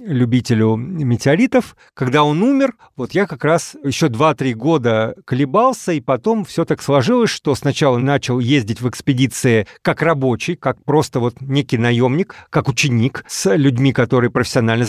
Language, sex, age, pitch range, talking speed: Russian, male, 40-59, 130-170 Hz, 150 wpm